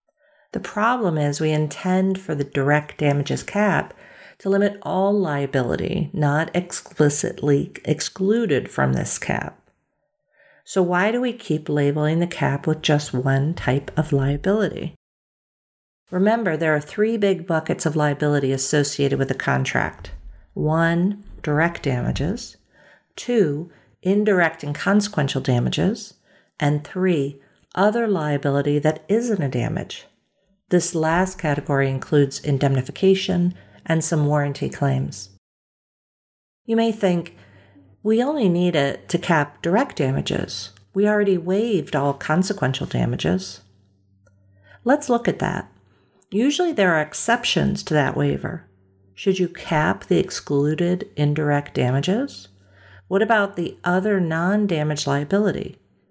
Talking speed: 120 wpm